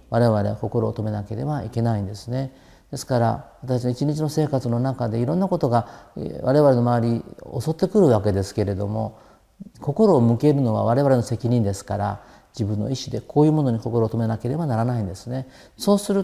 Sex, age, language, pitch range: male, 50-69, Japanese, 110-155 Hz